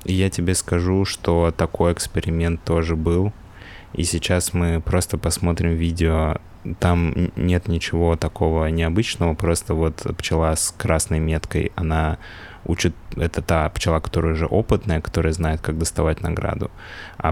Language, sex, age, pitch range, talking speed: Russian, male, 20-39, 80-95 Hz, 135 wpm